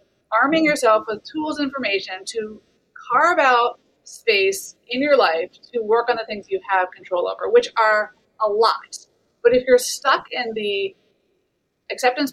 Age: 30-49